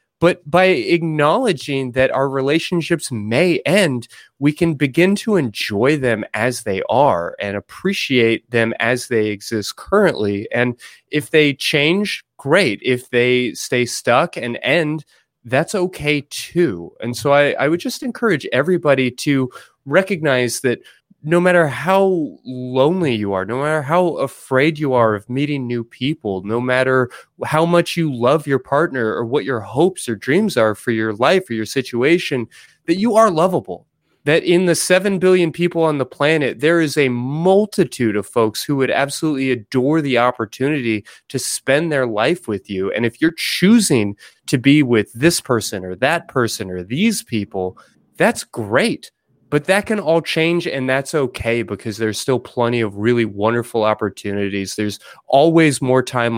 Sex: male